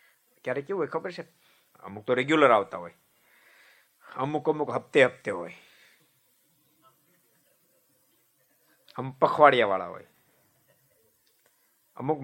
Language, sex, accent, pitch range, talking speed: Gujarati, male, native, 115-175 Hz, 85 wpm